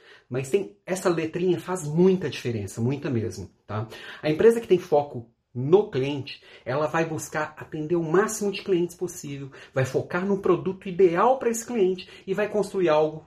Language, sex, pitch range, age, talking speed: Portuguese, male, 120-175 Hz, 40-59, 170 wpm